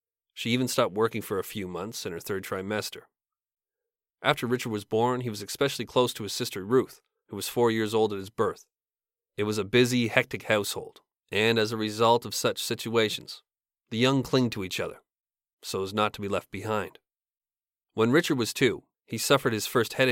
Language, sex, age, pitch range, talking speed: English, male, 30-49, 110-130 Hz, 200 wpm